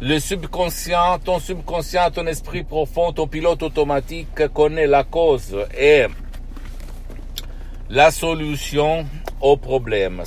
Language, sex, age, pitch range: Italian, male, 60-79, 105-145 Hz